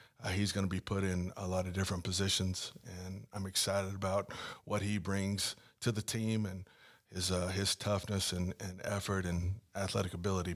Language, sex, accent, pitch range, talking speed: English, male, American, 90-105 Hz, 190 wpm